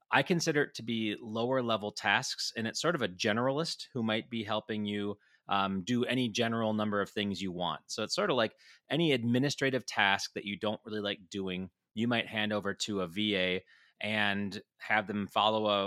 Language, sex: English, male